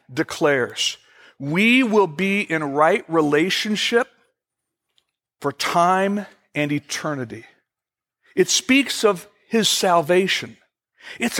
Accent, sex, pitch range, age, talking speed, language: American, male, 155-210 Hz, 60-79, 90 wpm, English